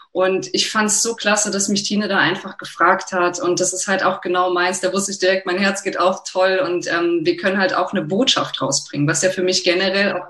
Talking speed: 255 wpm